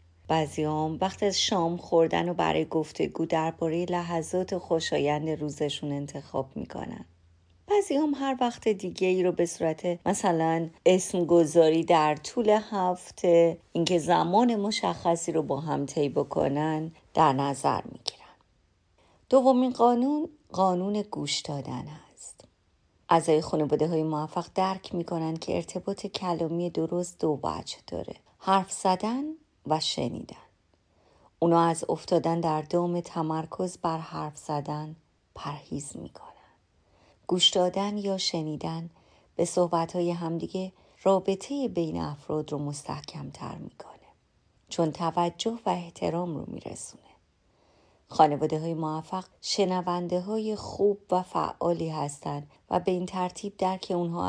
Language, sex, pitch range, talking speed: Persian, female, 155-185 Hz, 125 wpm